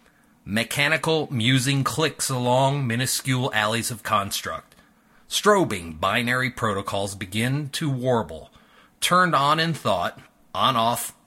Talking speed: 105 wpm